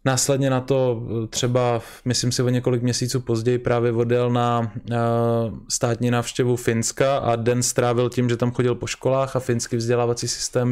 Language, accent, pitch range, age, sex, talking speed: Czech, native, 120-130 Hz, 20-39, male, 160 wpm